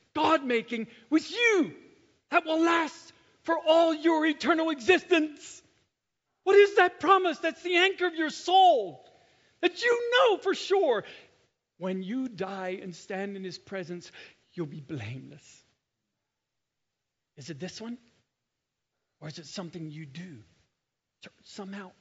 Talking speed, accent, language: 135 wpm, American, English